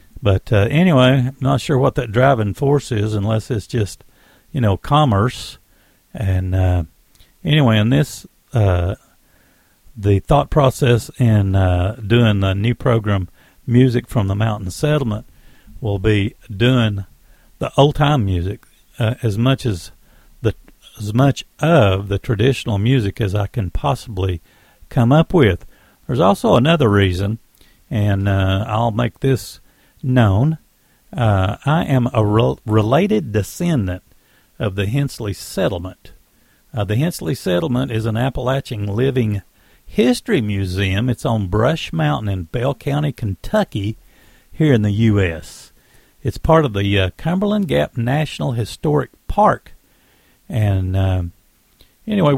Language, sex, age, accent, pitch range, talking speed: English, male, 50-69, American, 100-135 Hz, 130 wpm